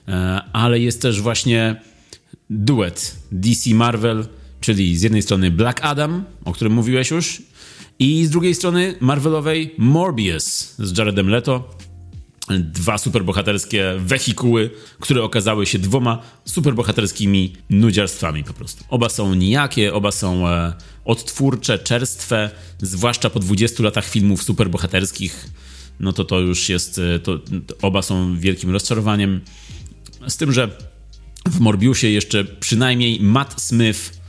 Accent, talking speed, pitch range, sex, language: native, 115 wpm, 90-115 Hz, male, Polish